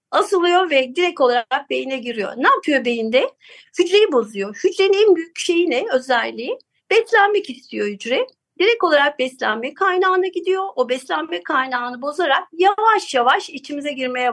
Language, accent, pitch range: Turkish, native, 260-365 Hz